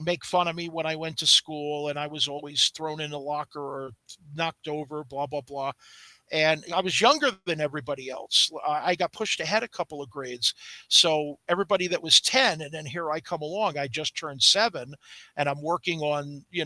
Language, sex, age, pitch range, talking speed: English, male, 50-69, 150-195 Hz, 210 wpm